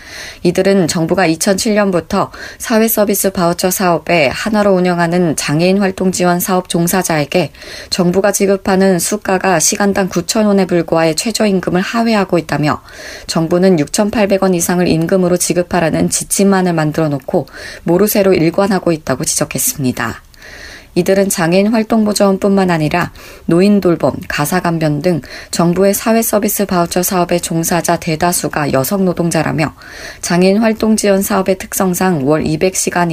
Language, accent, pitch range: Korean, native, 165-195 Hz